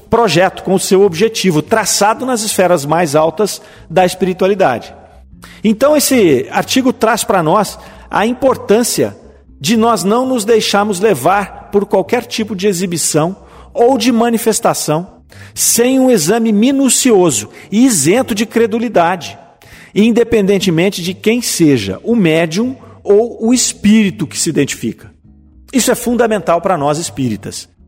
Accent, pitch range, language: Brazilian, 150-220 Hz, Portuguese